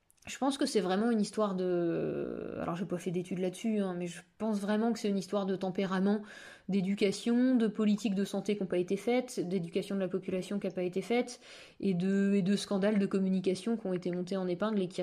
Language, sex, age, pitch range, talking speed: French, female, 20-39, 195-240 Hz, 235 wpm